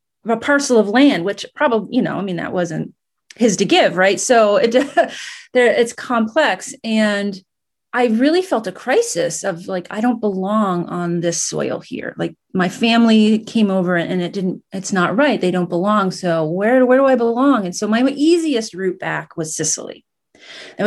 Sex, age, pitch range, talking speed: female, 30-49, 175-230 Hz, 185 wpm